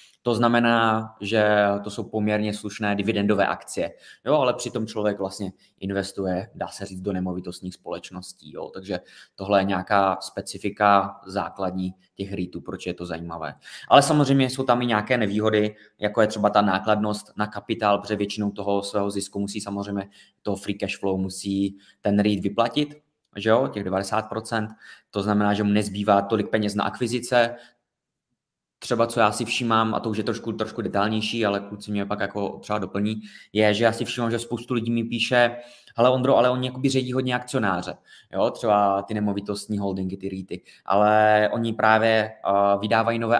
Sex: male